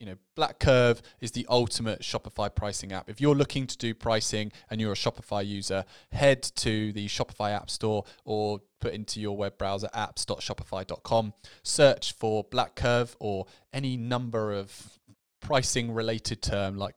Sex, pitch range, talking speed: male, 100-125 Hz, 165 wpm